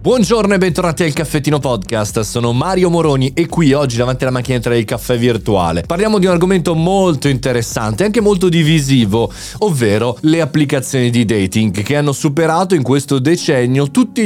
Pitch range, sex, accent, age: 115-150 Hz, male, native, 30-49